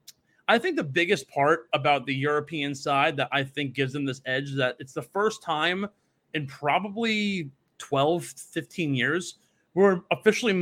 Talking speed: 165 wpm